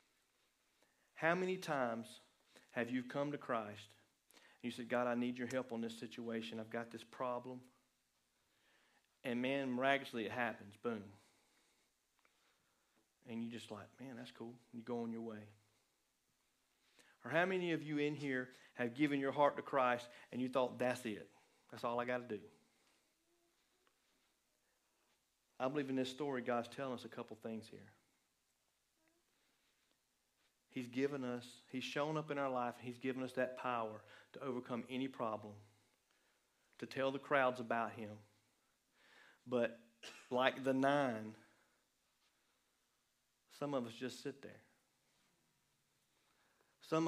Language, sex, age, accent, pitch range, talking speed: English, male, 40-59, American, 115-135 Hz, 145 wpm